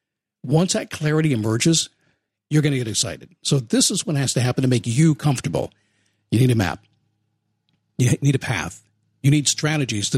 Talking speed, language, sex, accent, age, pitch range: 190 wpm, English, male, American, 50-69, 120-165 Hz